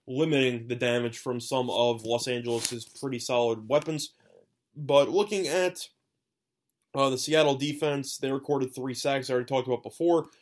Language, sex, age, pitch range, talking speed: English, male, 20-39, 120-150 Hz, 155 wpm